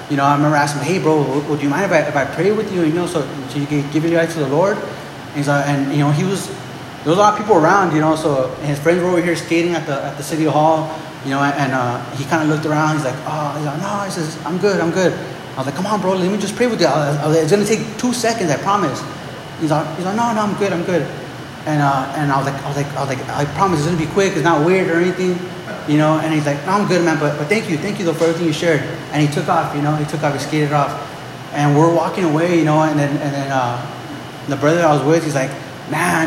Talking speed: 305 wpm